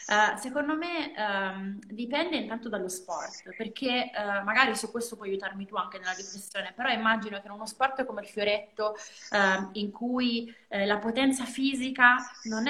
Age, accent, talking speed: 20-39, native, 145 wpm